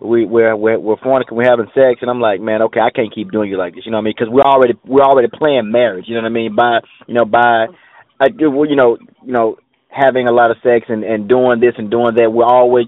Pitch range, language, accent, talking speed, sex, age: 115-135 Hz, English, American, 285 wpm, male, 20-39